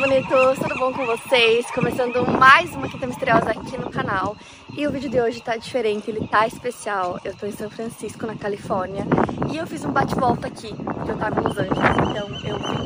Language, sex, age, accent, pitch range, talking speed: Portuguese, female, 20-39, Brazilian, 220-265 Hz, 210 wpm